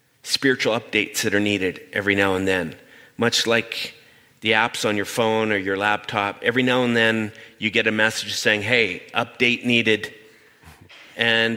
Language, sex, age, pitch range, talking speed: English, male, 40-59, 110-125 Hz, 165 wpm